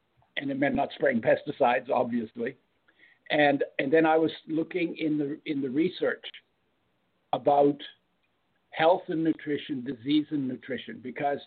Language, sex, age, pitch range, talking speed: English, male, 60-79, 145-200 Hz, 135 wpm